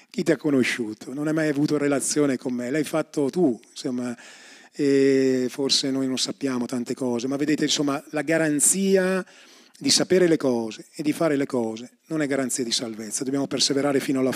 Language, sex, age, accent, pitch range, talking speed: Italian, male, 30-49, native, 135-195 Hz, 190 wpm